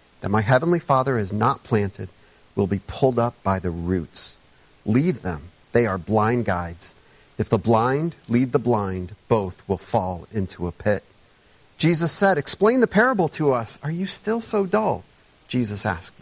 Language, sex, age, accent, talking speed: English, male, 40-59, American, 170 wpm